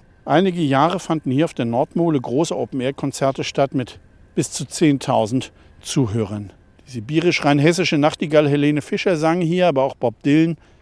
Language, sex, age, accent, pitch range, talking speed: German, male, 50-69, German, 120-175 Hz, 150 wpm